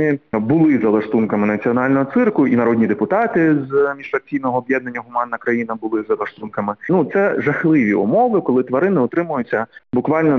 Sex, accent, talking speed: male, native, 135 wpm